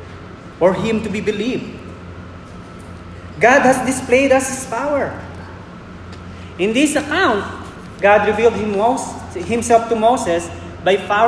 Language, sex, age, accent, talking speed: English, male, 20-39, Filipino, 105 wpm